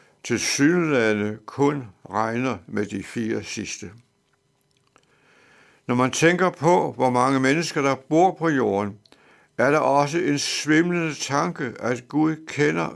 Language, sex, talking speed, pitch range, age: Danish, male, 130 wpm, 115-145 Hz, 70-89